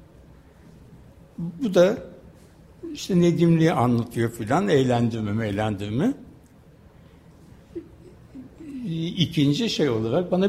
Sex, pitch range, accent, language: male, 115-165 Hz, native, Turkish